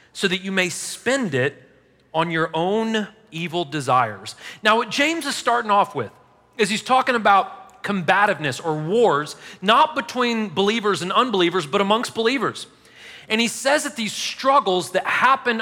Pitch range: 175-235 Hz